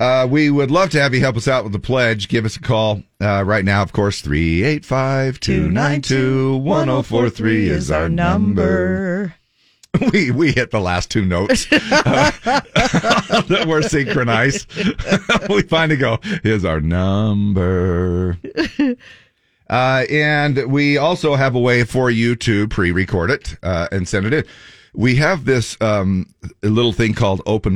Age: 50-69